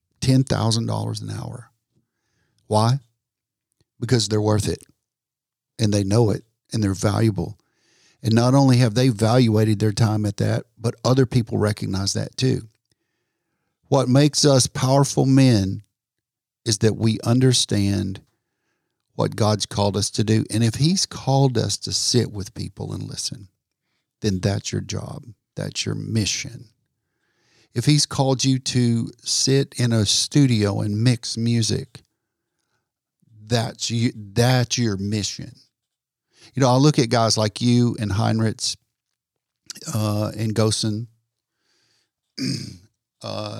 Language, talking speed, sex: English, 130 wpm, male